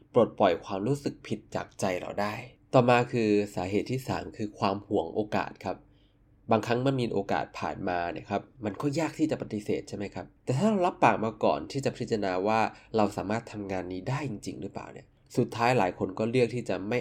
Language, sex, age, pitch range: Thai, male, 20-39, 100-135 Hz